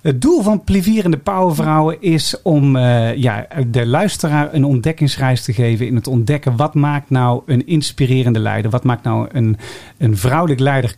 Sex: male